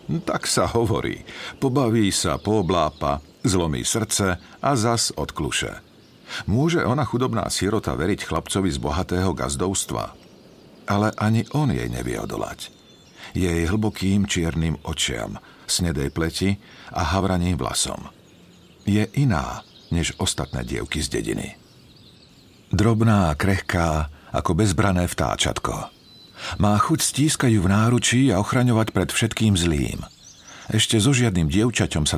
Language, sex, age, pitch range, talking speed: Slovak, male, 50-69, 85-110 Hz, 120 wpm